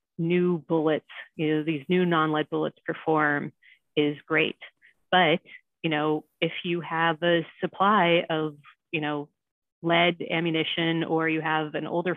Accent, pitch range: American, 155-175 Hz